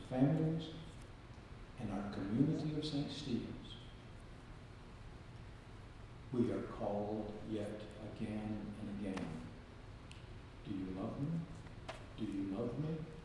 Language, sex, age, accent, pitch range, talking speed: English, male, 60-79, American, 105-125 Hz, 100 wpm